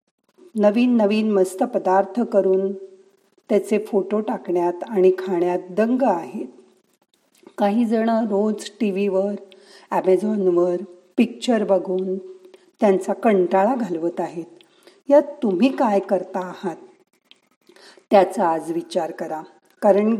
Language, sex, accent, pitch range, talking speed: Marathi, female, native, 190-235 Hz, 100 wpm